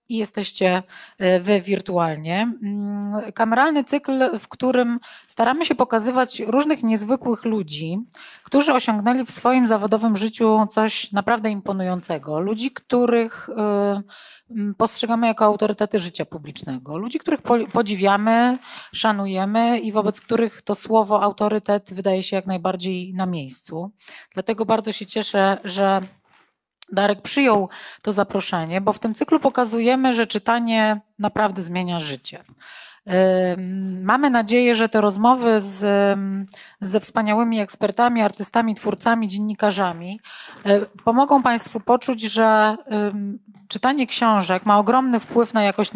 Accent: native